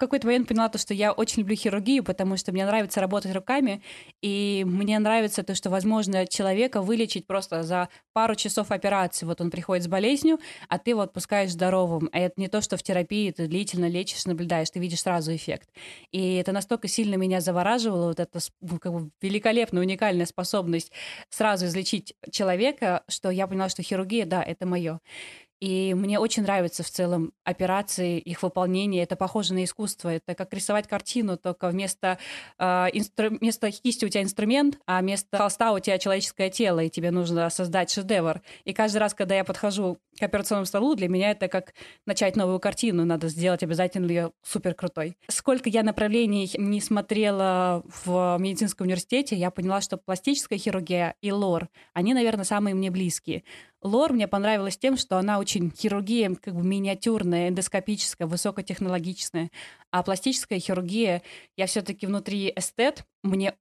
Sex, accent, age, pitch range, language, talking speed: female, native, 20-39, 180-210 Hz, Russian, 165 wpm